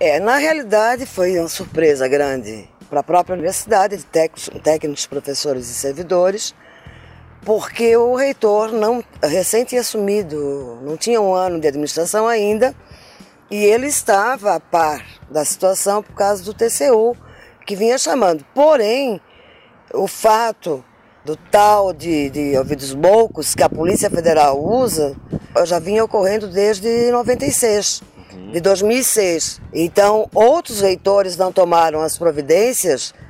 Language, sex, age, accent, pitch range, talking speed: Portuguese, female, 20-39, Brazilian, 165-230 Hz, 130 wpm